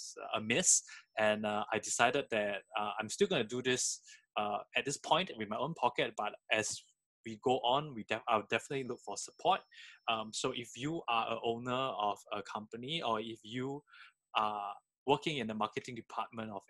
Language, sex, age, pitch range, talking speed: English, male, 20-39, 105-125 Hz, 185 wpm